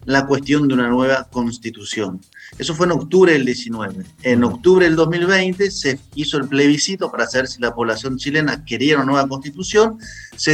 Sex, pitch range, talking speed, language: male, 125-165 Hz, 175 wpm, Spanish